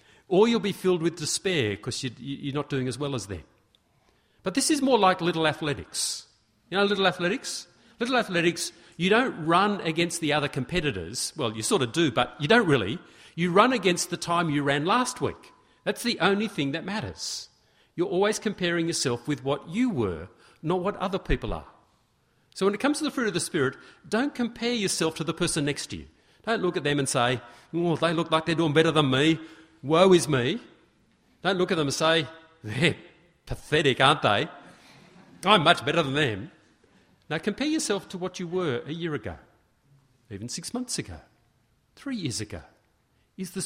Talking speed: 195 wpm